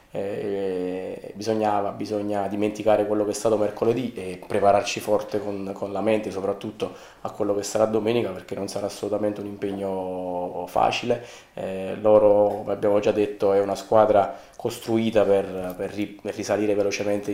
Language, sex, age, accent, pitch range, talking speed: Italian, male, 20-39, native, 100-110 Hz, 160 wpm